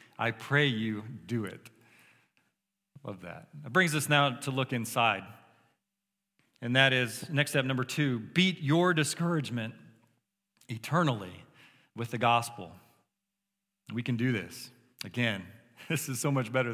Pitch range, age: 115-155 Hz, 40-59